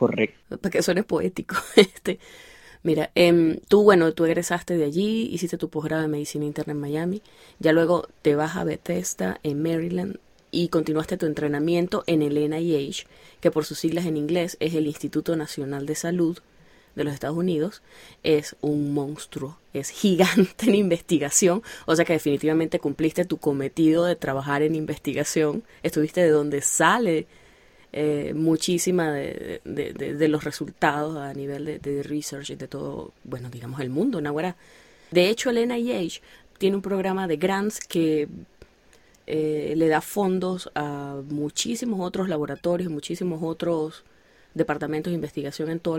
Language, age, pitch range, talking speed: Spanish, 20-39, 150-180 Hz, 160 wpm